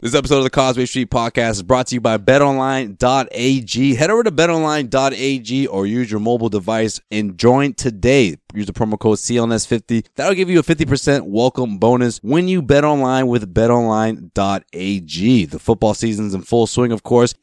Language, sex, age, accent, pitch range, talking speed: English, male, 30-49, American, 110-140 Hz, 180 wpm